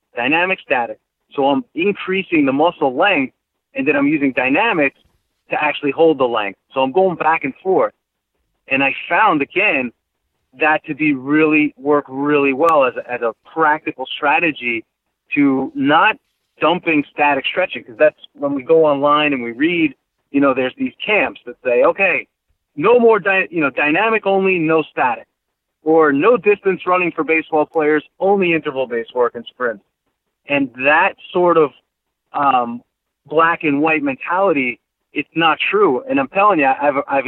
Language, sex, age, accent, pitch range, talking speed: English, male, 30-49, American, 135-190 Hz, 165 wpm